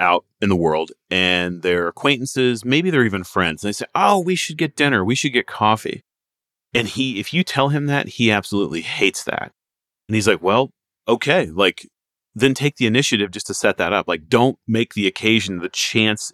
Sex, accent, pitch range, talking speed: male, American, 95-130 Hz, 205 wpm